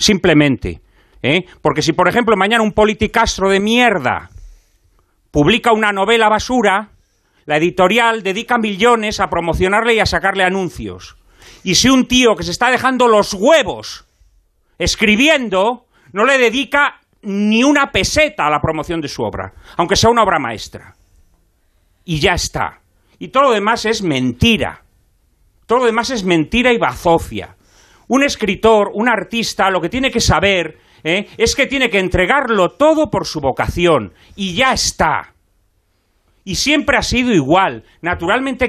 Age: 40-59